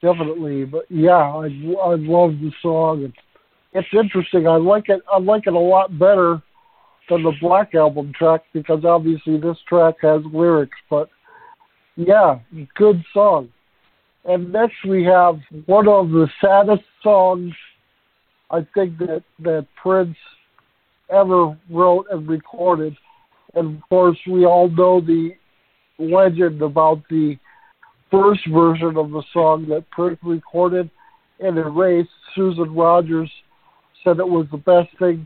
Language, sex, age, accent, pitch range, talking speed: English, male, 50-69, American, 165-195 Hz, 140 wpm